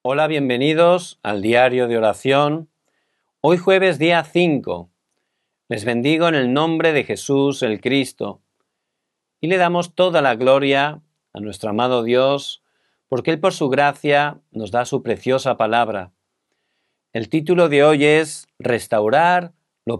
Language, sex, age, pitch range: Korean, male, 40-59, 120-160 Hz